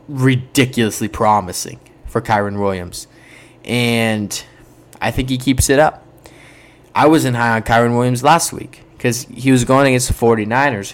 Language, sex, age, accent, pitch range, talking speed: English, male, 20-39, American, 110-135 Hz, 155 wpm